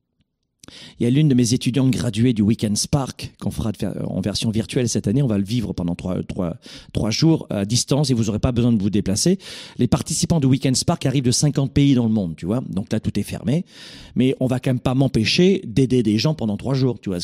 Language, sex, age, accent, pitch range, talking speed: French, male, 40-59, French, 110-155 Hz, 255 wpm